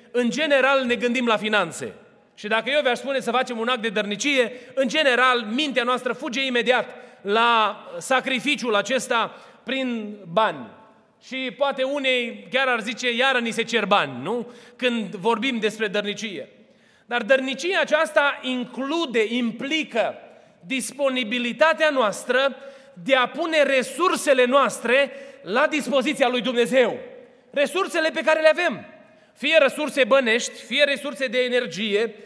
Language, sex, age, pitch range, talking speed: Romanian, male, 30-49, 235-275 Hz, 135 wpm